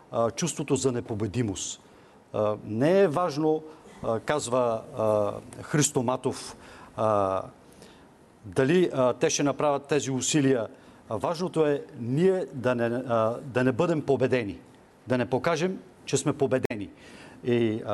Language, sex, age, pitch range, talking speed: Bulgarian, male, 40-59, 120-145 Hz, 100 wpm